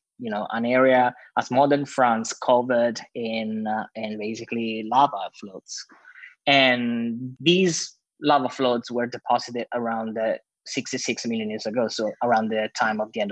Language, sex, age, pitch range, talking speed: English, male, 20-39, 115-135 Hz, 150 wpm